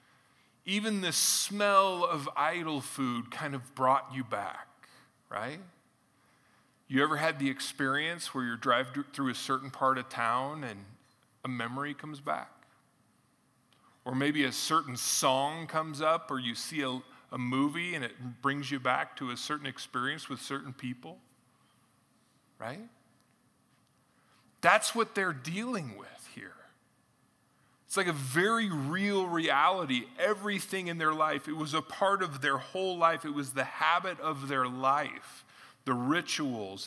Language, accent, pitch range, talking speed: English, American, 135-175 Hz, 145 wpm